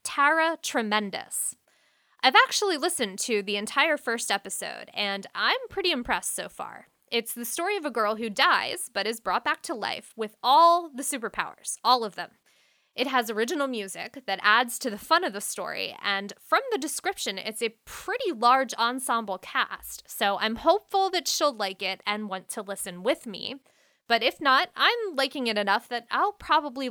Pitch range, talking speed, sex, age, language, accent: 210-295 Hz, 185 wpm, female, 10-29, English, American